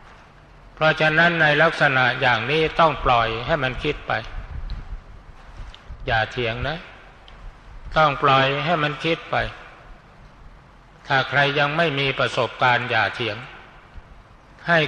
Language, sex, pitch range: Thai, male, 125-155 Hz